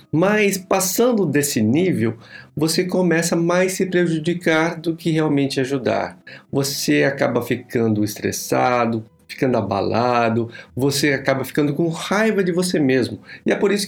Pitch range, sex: 120-170 Hz, male